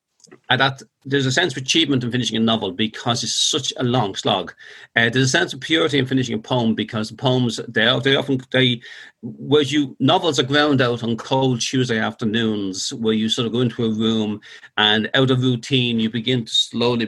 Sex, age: male, 40-59